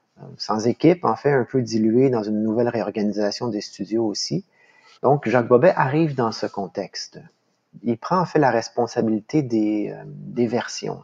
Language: French